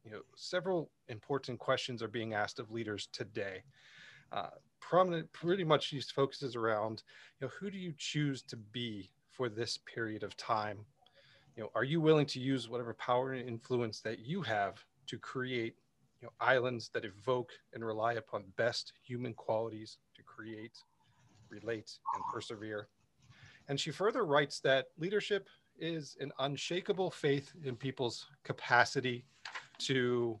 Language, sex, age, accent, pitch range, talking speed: English, male, 30-49, American, 115-145 Hz, 150 wpm